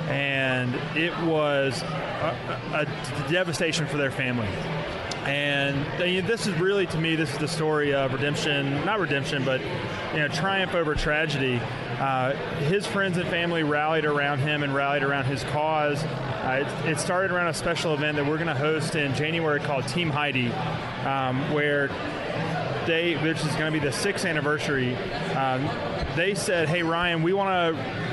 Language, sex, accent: English, male, American